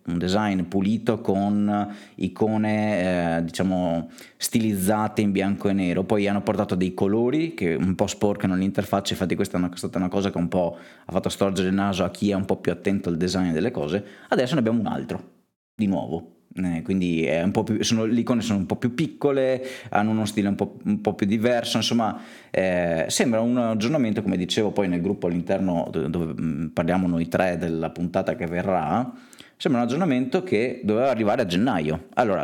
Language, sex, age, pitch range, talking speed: Italian, male, 20-39, 90-110 Hz, 200 wpm